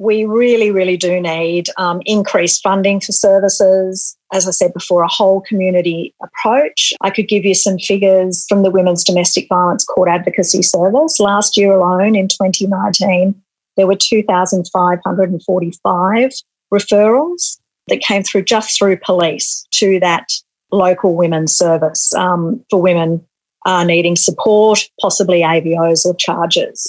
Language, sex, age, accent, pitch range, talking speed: English, female, 40-59, Australian, 180-215 Hz, 140 wpm